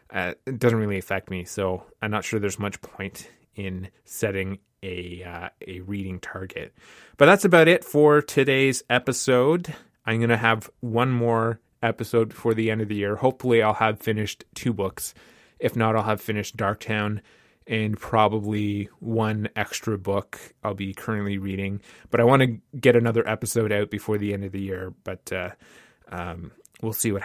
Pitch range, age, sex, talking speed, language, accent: 105-120 Hz, 20-39, male, 180 wpm, English, American